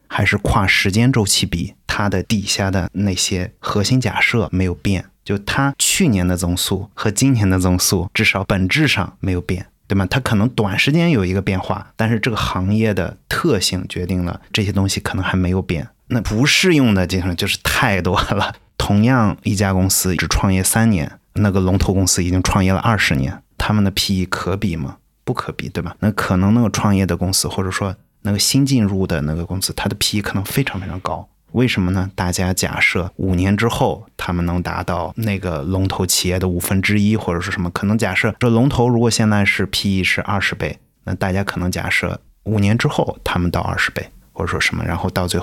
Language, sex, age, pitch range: Chinese, male, 30-49, 90-105 Hz